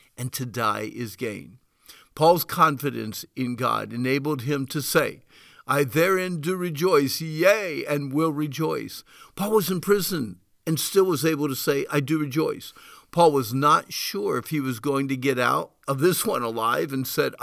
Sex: male